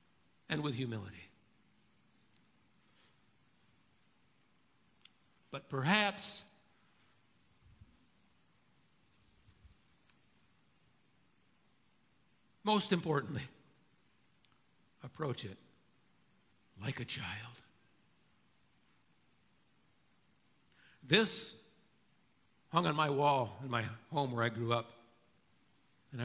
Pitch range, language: 120-155 Hz, English